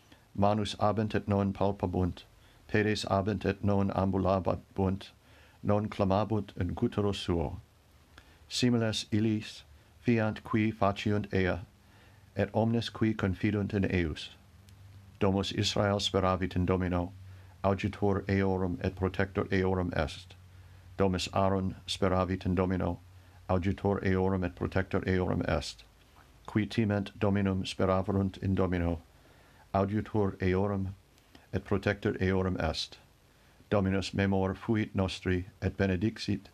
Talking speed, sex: 110 wpm, male